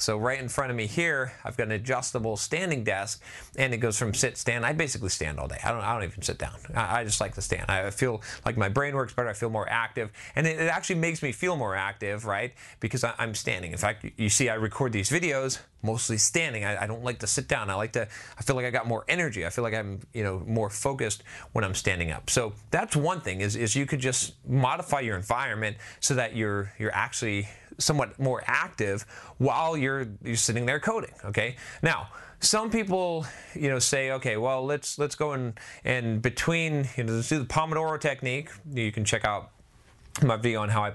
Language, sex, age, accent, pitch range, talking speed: English, male, 30-49, American, 110-145 Hz, 230 wpm